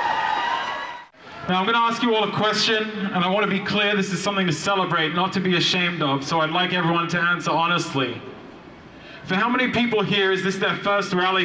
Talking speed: 220 wpm